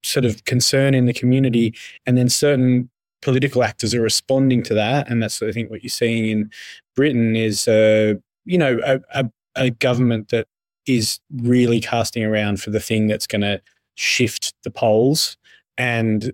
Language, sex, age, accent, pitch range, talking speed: English, male, 20-39, Australian, 115-140 Hz, 175 wpm